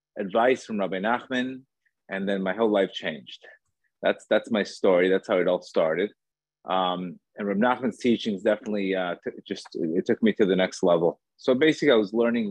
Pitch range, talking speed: 95-120 Hz, 185 wpm